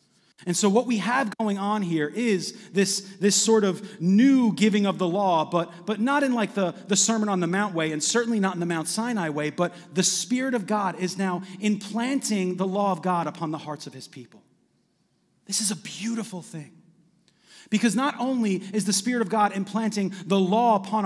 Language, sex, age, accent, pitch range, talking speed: English, male, 30-49, American, 175-220 Hz, 210 wpm